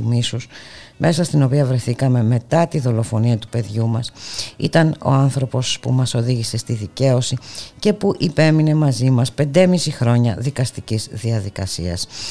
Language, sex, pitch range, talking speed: Greek, female, 105-130 Hz, 135 wpm